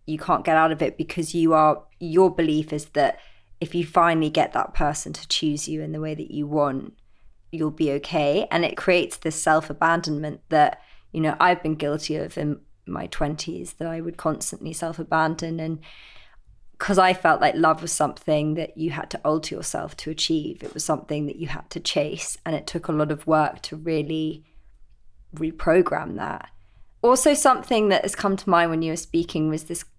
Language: English